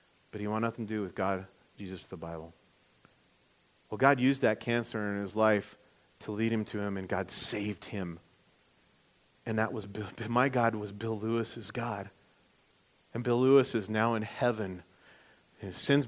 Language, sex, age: English, male, 40-59